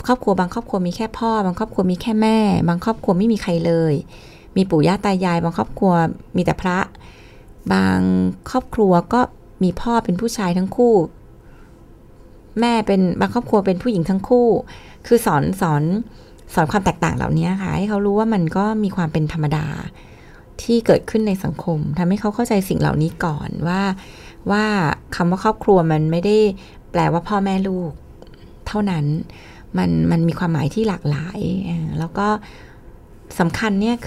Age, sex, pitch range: 20-39, female, 165-220 Hz